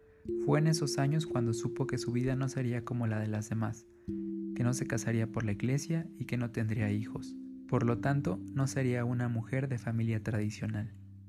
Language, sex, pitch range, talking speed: Spanish, male, 115-135 Hz, 200 wpm